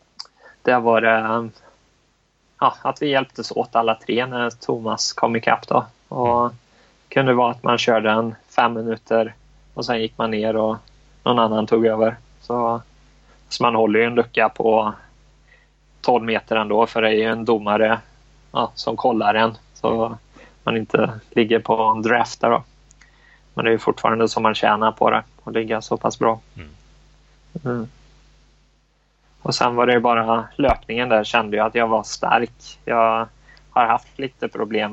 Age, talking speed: 20-39, 175 wpm